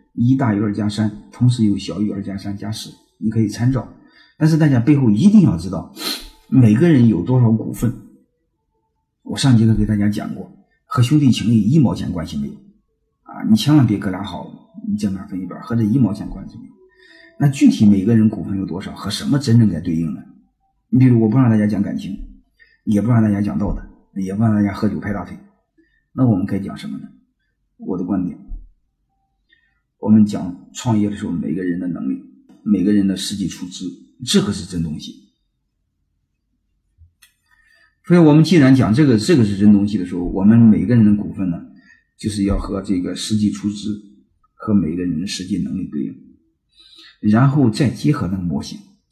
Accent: native